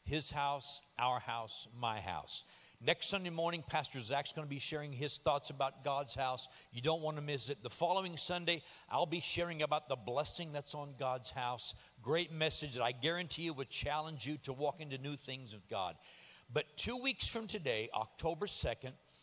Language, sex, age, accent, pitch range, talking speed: English, male, 50-69, American, 125-160 Hz, 195 wpm